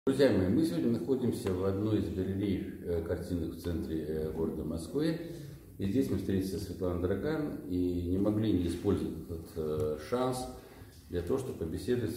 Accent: native